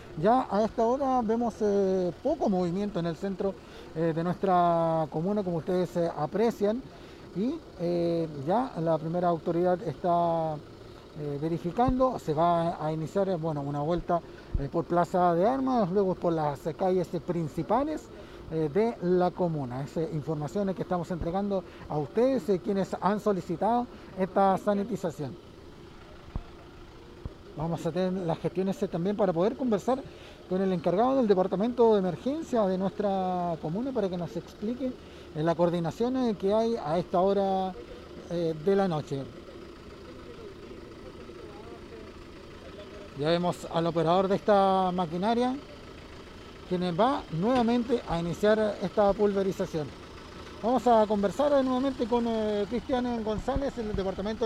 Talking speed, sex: 130 wpm, male